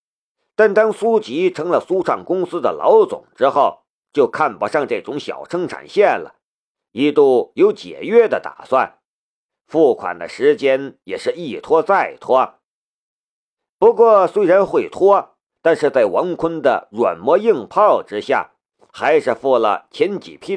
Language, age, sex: Chinese, 50-69, male